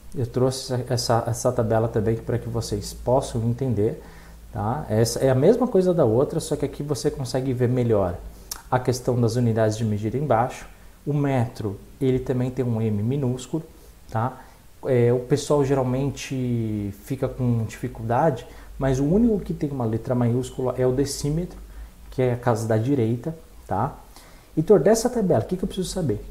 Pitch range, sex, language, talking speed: 115-145 Hz, male, Portuguese, 170 wpm